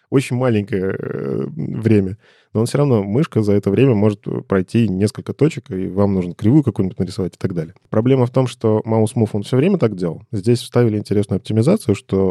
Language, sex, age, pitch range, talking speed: Russian, male, 20-39, 100-125 Hz, 190 wpm